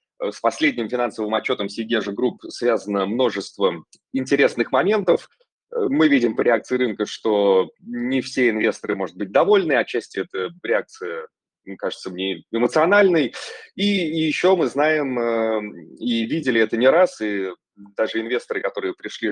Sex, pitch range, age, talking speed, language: male, 110-170 Hz, 20-39, 135 wpm, Russian